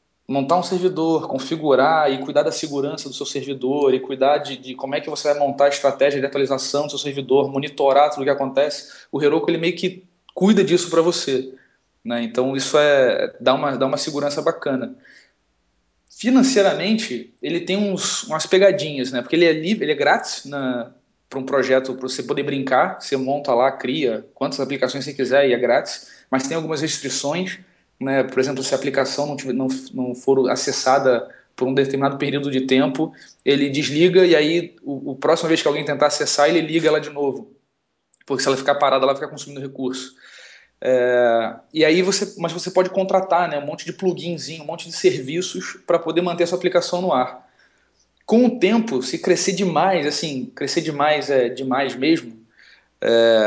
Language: Portuguese